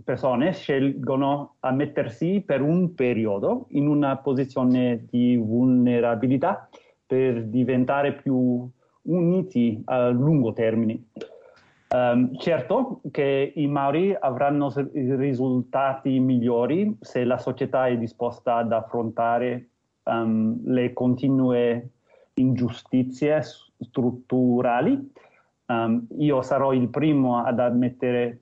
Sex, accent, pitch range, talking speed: male, native, 125-150 Hz, 95 wpm